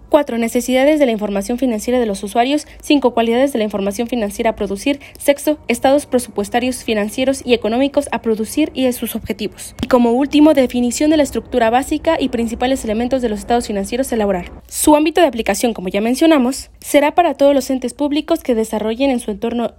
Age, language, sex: 20-39, Spanish, female